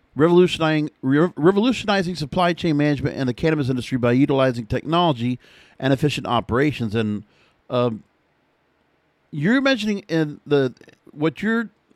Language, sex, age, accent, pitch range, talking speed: English, male, 50-69, American, 130-165 Hz, 115 wpm